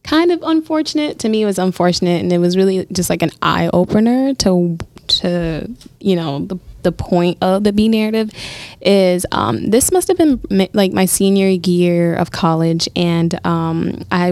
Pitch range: 175-215 Hz